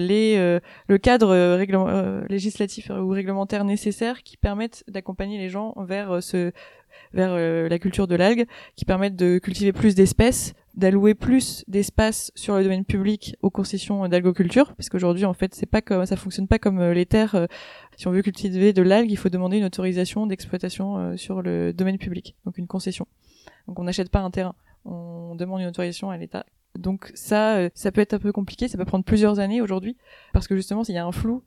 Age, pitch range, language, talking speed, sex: 20-39, 180-205 Hz, French, 210 wpm, female